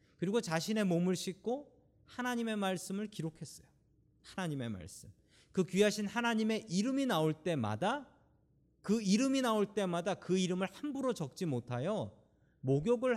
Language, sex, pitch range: Korean, male, 130-205 Hz